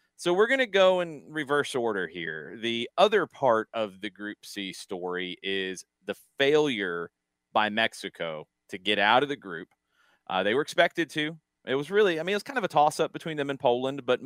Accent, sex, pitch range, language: American, male, 105-150 Hz, English